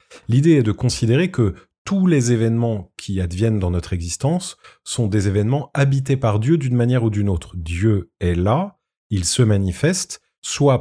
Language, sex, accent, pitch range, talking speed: French, male, French, 95-135 Hz, 170 wpm